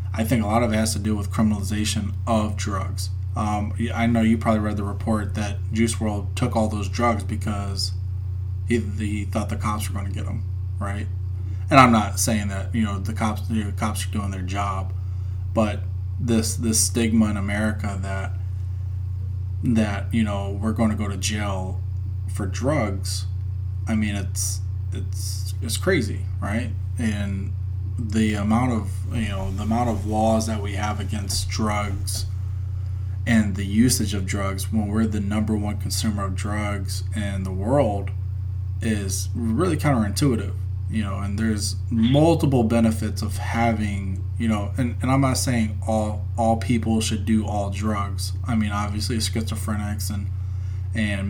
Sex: male